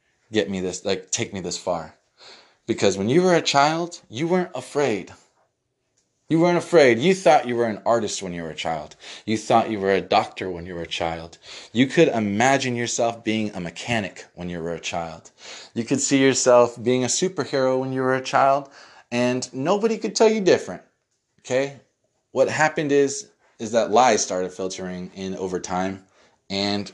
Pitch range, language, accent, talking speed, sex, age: 95-140 Hz, English, American, 190 wpm, male, 20-39